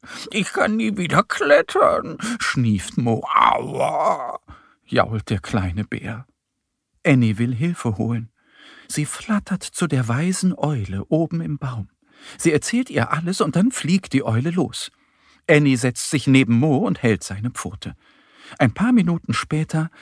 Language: German